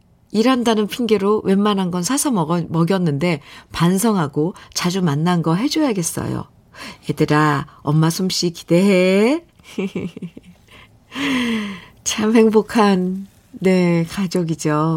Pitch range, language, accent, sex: 165-205 Hz, Korean, native, female